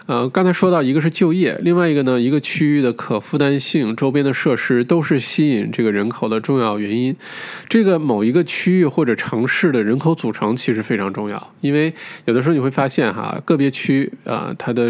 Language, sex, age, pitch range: Chinese, male, 20-39, 110-145 Hz